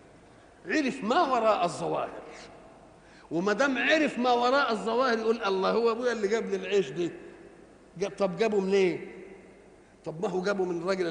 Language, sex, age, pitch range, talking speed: Arabic, male, 50-69, 185-230 Hz, 155 wpm